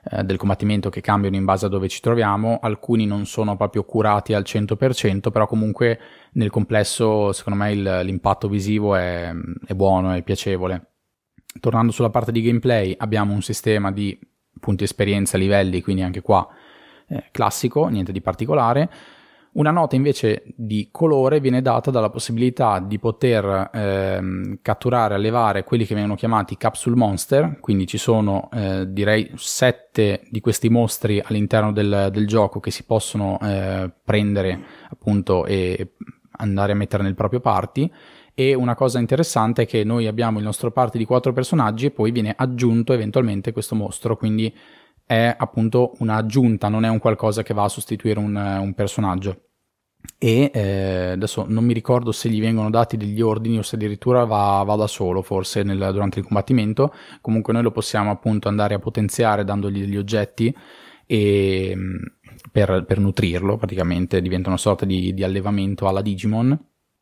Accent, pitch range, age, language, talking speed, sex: native, 100-115 Hz, 20-39, Italian, 160 wpm, male